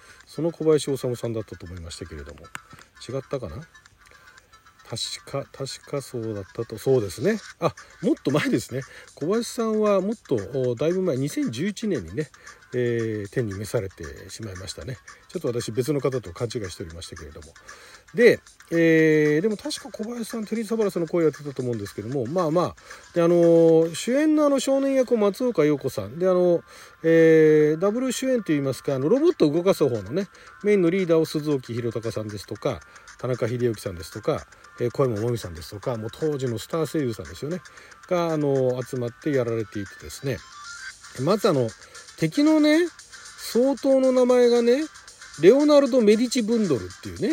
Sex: male